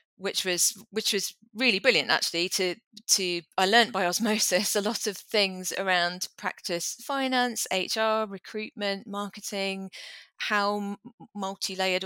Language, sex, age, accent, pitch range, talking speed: English, female, 30-49, British, 175-205 Hz, 125 wpm